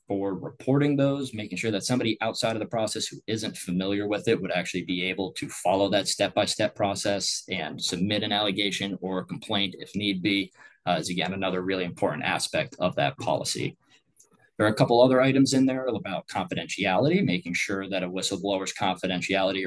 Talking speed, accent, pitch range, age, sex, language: 185 wpm, American, 95-115 Hz, 20-39, male, English